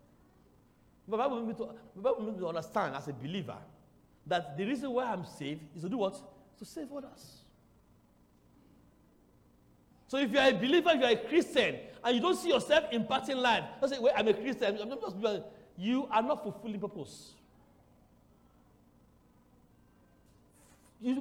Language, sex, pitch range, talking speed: English, male, 200-310 Hz, 165 wpm